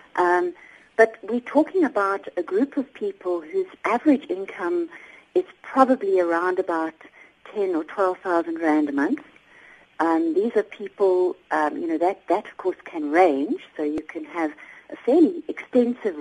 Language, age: English, 60-79